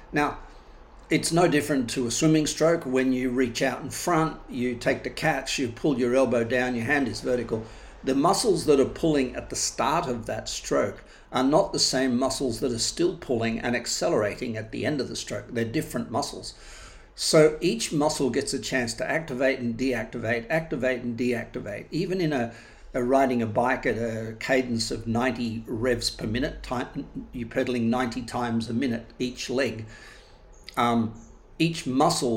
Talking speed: 180 wpm